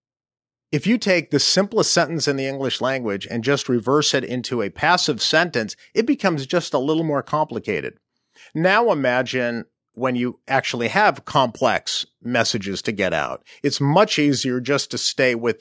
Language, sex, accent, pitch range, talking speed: English, male, American, 125-155 Hz, 165 wpm